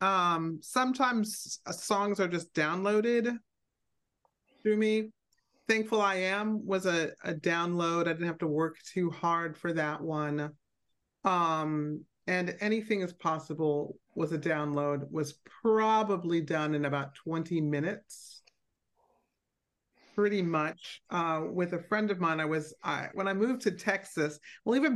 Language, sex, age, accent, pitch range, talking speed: English, male, 40-59, American, 155-195 Hz, 140 wpm